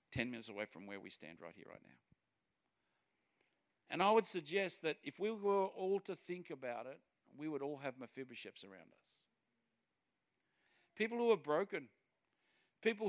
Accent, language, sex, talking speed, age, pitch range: Australian, English, male, 165 wpm, 50-69, 150-200 Hz